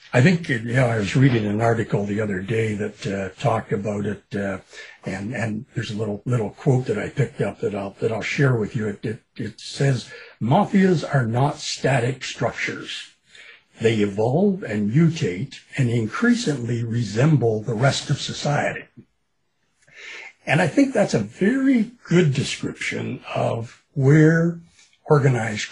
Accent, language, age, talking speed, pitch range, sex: American, English, 60-79, 155 wpm, 115-165 Hz, male